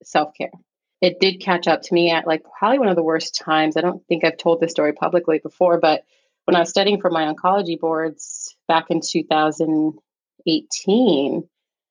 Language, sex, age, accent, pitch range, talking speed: English, female, 30-49, American, 155-180 Hz, 185 wpm